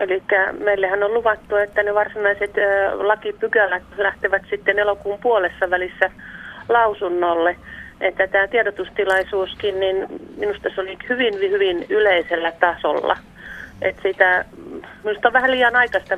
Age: 40-59